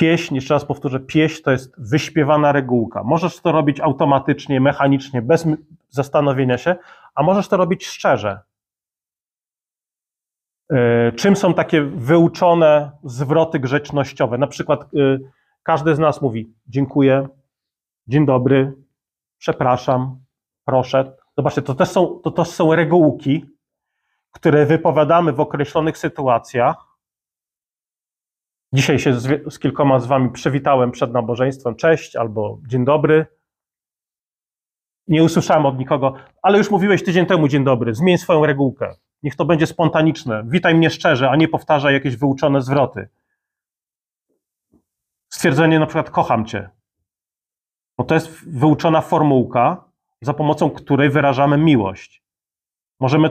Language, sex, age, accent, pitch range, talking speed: Polish, male, 30-49, native, 130-160 Hz, 120 wpm